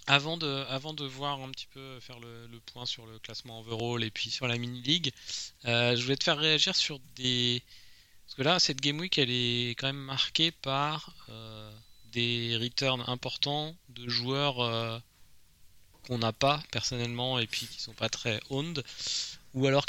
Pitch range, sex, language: 110-135 Hz, male, French